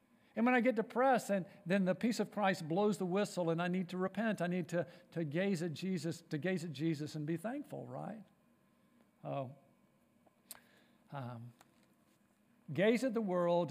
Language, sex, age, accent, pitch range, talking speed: English, male, 50-69, American, 155-205 Hz, 175 wpm